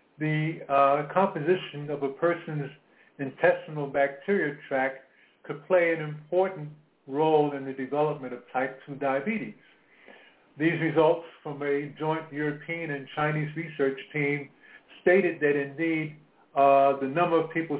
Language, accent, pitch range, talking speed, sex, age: English, American, 140-165 Hz, 130 wpm, male, 50-69